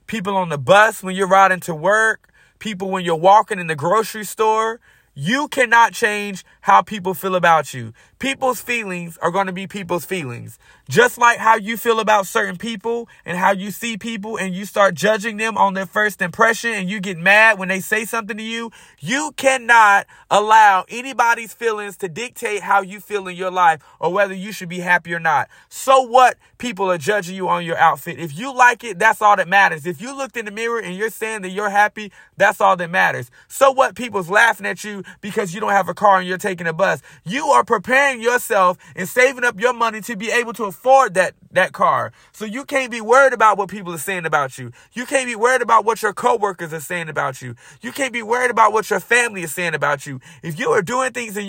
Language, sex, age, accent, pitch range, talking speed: English, male, 30-49, American, 185-230 Hz, 225 wpm